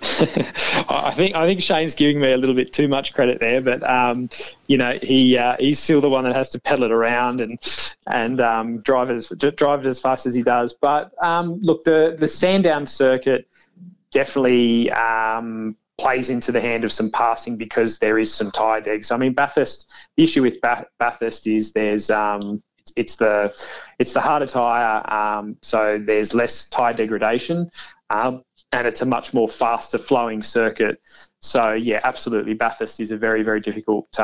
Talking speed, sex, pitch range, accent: 185 wpm, male, 110-135 Hz, Australian